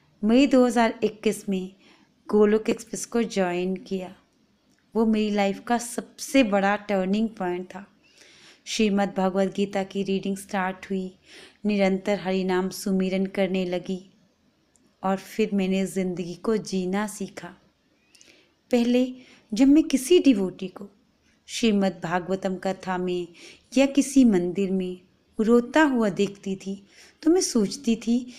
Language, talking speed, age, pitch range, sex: Hindi, 125 wpm, 20-39, 190-245 Hz, female